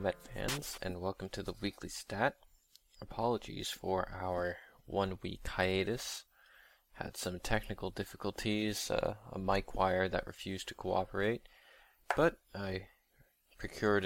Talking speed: 120 wpm